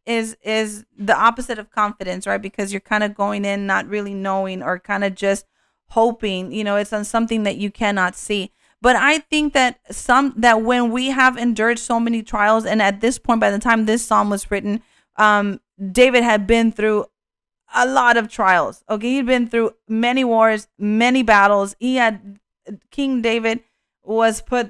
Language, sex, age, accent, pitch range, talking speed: English, female, 30-49, American, 205-250 Hz, 185 wpm